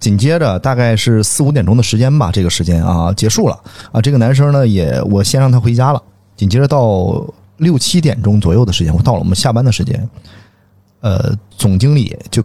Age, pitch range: 30-49, 100-125 Hz